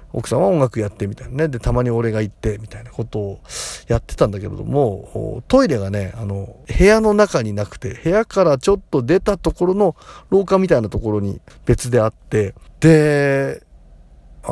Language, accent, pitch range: Japanese, native, 105-160 Hz